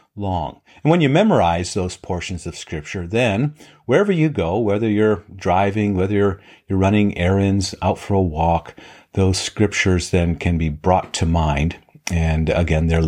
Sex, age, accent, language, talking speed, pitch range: male, 50-69, American, English, 165 wpm, 85-115 Hz